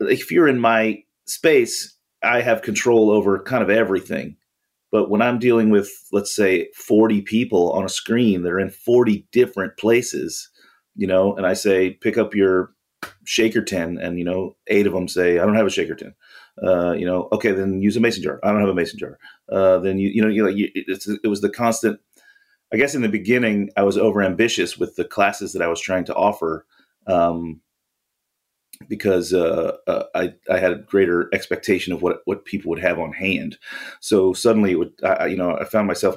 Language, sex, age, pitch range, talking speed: English, male, 30-49, 90-115 Hz, 200 wpm